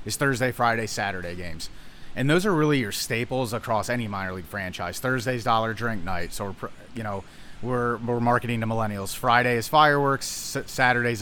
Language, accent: English, American